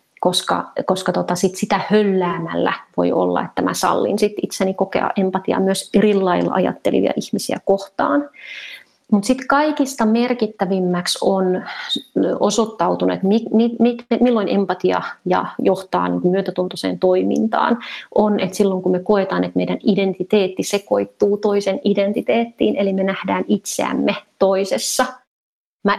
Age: 30-49